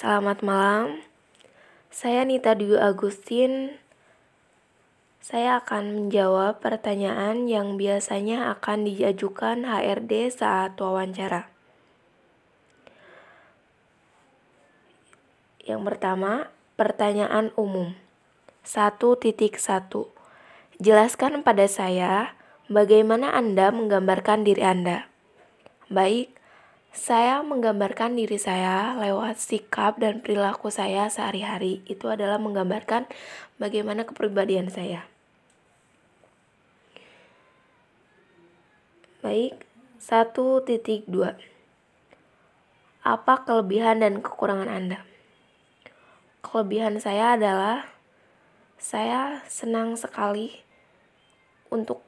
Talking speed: 70 wpm